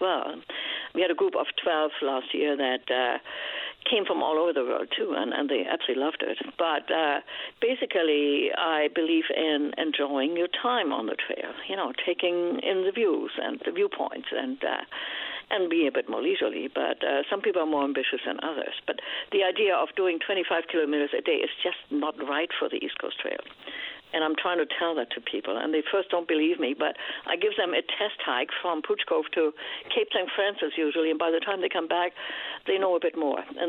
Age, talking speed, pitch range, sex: 60-79, 215 wpm, 155-250 Hz, female